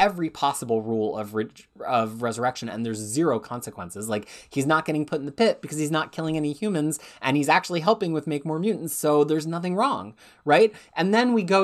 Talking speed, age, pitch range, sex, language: 215 wpm, 30-49, 140-200 Hz, male, English